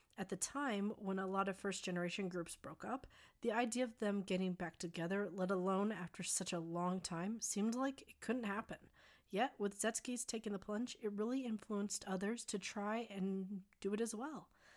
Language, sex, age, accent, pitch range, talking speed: English, female, 30-49, American, 185-225 Hz, 195 wpm